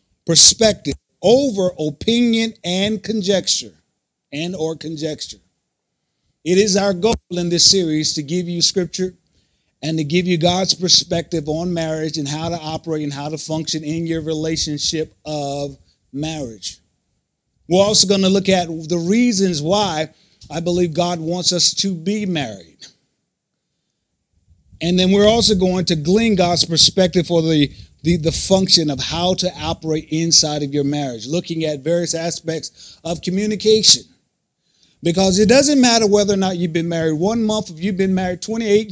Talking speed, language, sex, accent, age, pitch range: 155 wpm, English, male, American, 50-69, 155-200 Hz